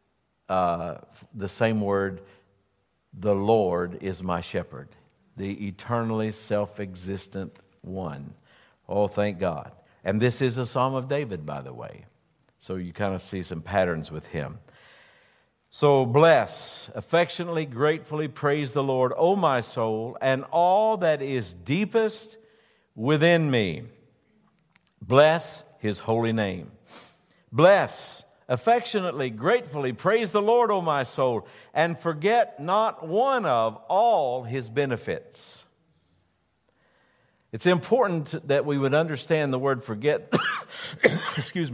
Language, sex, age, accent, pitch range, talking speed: English, male, 60-79, American, 105-150 Hz, 120 wpm